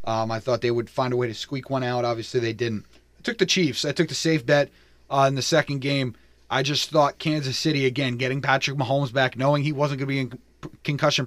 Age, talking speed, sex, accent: 30-49, 250 wpm, male, American